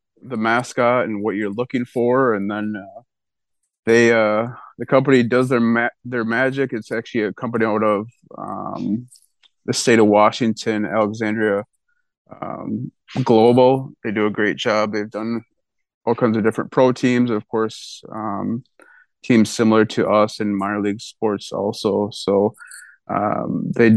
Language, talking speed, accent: English, 150 wpm, American